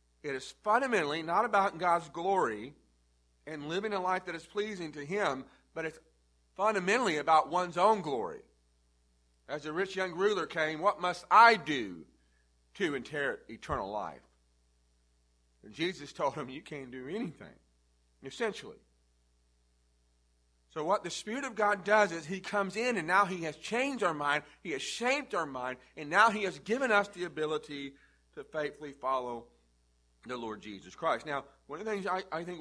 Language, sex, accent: English, male, American